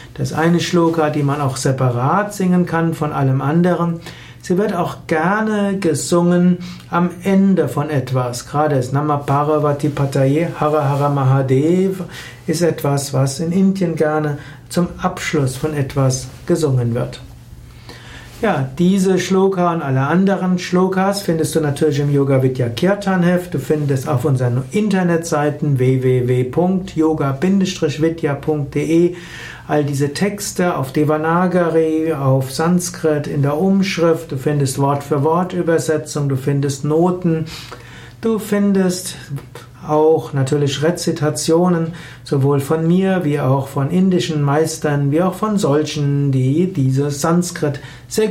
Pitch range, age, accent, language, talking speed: 140-175 Hz, 60-79, German, German, 120 wpm